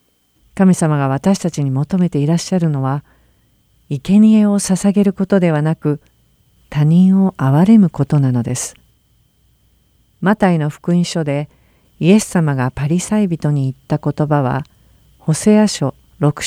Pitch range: 140-190 Hz